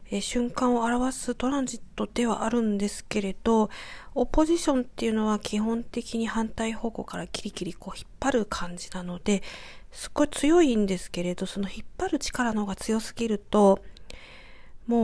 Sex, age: female, 40-59